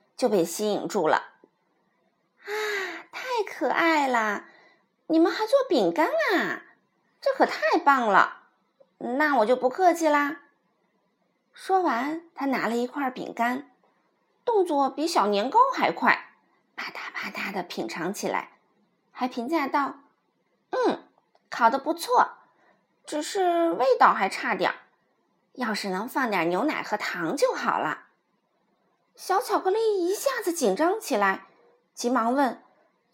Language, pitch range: Chinese, 250-380 Hz